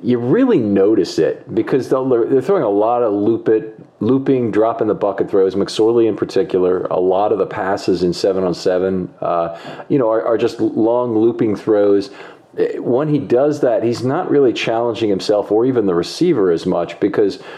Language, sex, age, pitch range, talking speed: English, male, 40-59, 95-125 Hz, 180 wpm